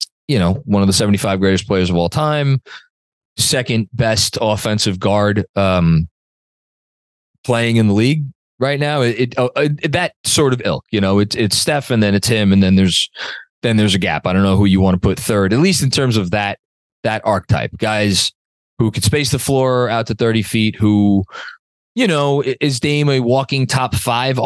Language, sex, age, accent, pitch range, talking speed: English, male, 20-39, American, 95-125 Hz, 200 wpm